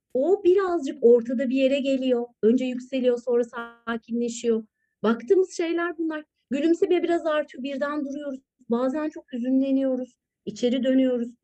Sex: female